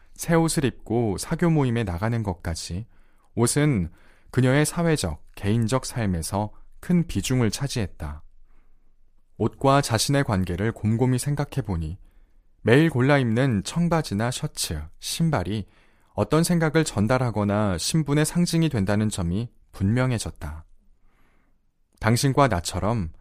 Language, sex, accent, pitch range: Korean, male, native, 90-130 Hz